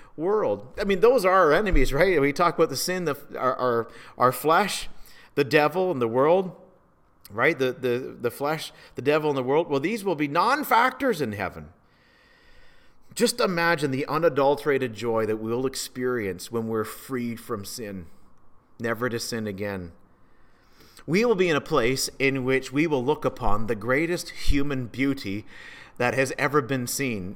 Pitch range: 115-150 Hz